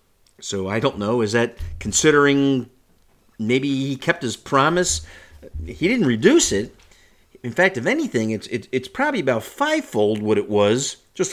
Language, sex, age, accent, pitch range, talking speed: English, male, 50-69, American, 100-160 Hz, 160 wpm